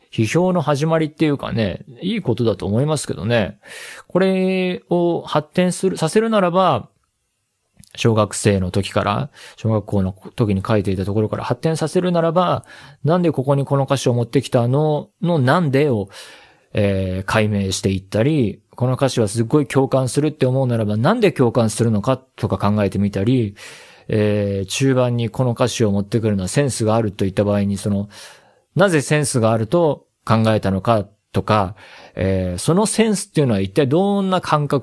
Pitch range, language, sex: 105-155 Hz, Japanese, male